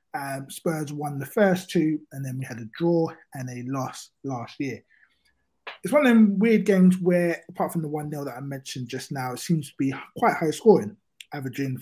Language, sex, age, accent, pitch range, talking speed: English, male, 20-39, British, 125-180 Hz, 215 wpm